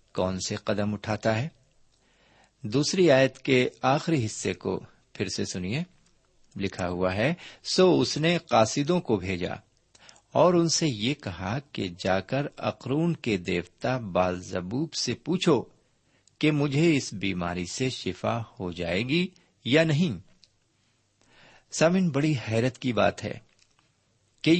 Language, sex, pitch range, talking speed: Urdu, male, 100-150 Hz, 135 wpm